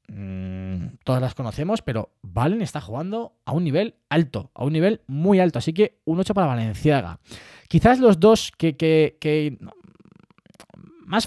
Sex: male